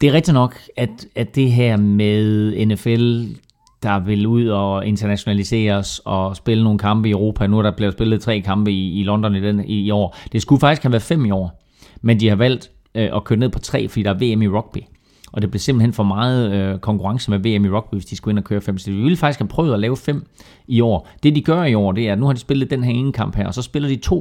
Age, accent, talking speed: 30-49, native, 275 wpm